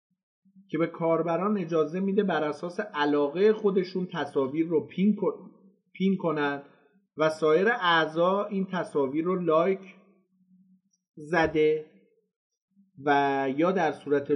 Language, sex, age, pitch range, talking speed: Persian, male, 50-69, 130-190 Hz, 110 wpm